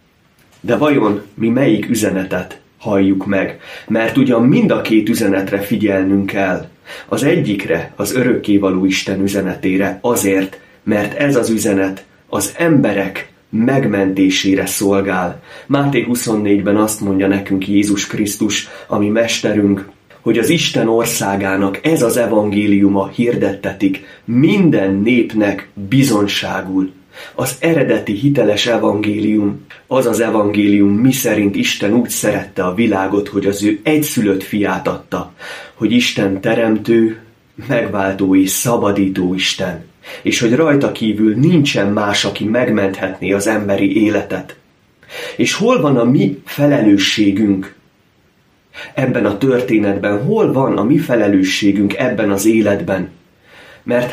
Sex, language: male, Hungarian